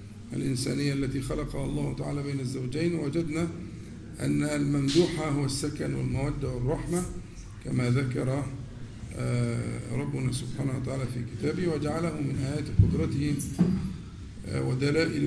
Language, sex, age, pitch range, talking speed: Arabic, male, 50-69, 105-145 Hz, 100 wpm